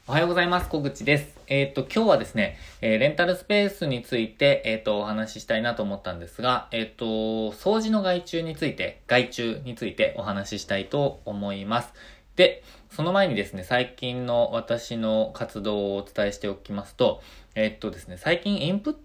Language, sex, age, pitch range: Japanese, male, 20-39, 105-150 Hz